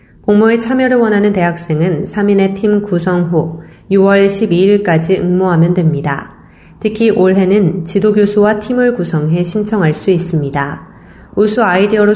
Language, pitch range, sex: Korean, 170-210 Hz, female